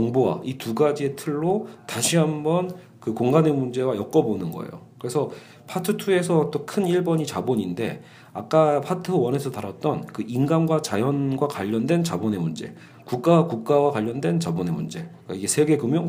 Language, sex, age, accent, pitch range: Korean, male, 40-59, native, 110-155 Hz